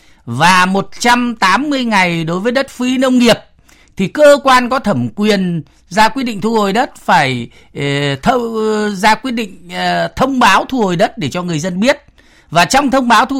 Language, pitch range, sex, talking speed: Vietnamese, 175-240 Hz, male, 195 wpm